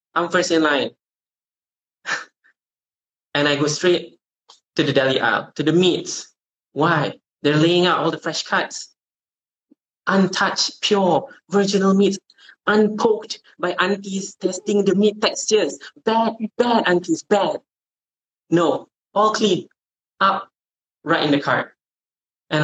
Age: 20-39